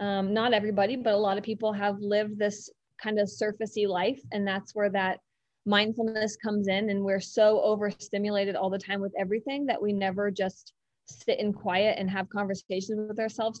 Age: 30-49